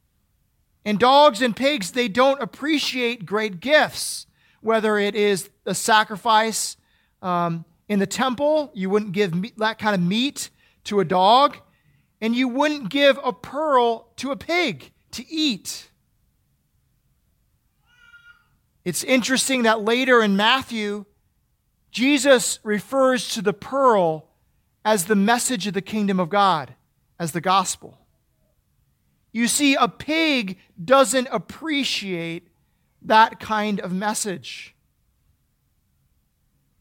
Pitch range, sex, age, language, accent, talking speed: 200-245 Hz, male, 40-59, English, American, 115 wpm